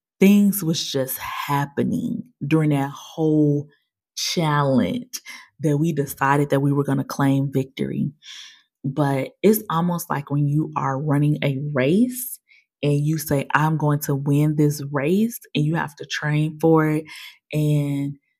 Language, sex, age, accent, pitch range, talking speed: English, female, 20-39, American, 140-160 Hz, 145 wpm